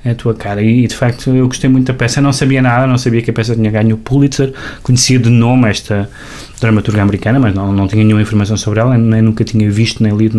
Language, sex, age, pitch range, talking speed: Portuguese, male, 20-39, 110-130 Hz, 250 wpm